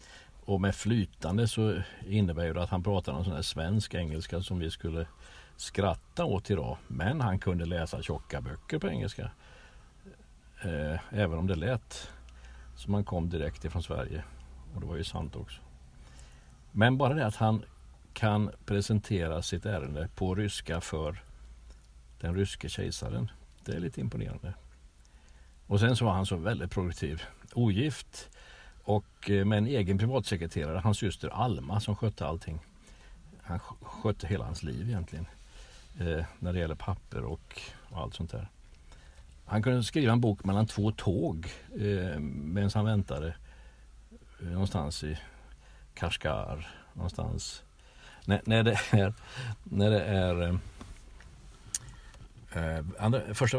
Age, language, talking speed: 60-79, Swedish, 140 wpm